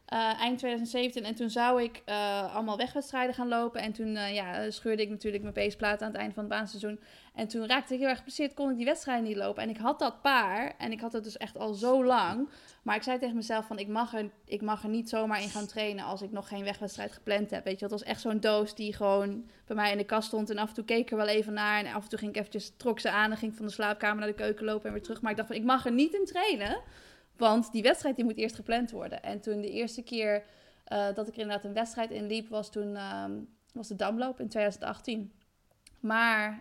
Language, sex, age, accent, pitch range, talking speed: Dutch, female, 20-39, Dutch, 210-245 Hz, 270 wpm